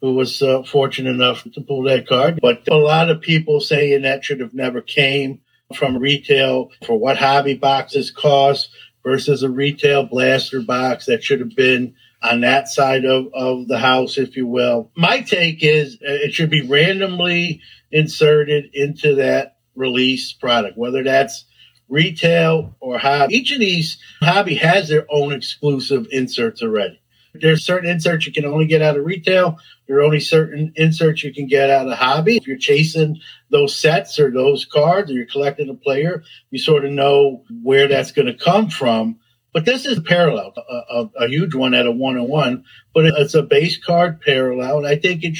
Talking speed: 185 wpm